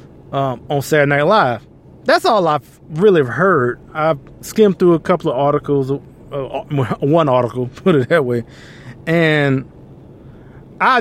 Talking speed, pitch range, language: 145 wpm, 150-200 Hz, English